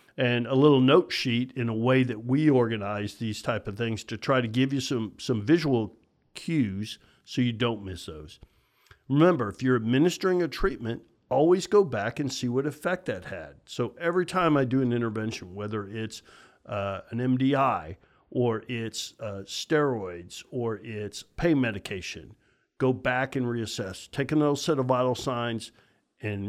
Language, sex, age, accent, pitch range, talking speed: English, male, 50-69, American, 110-140 Hz, 170 wpm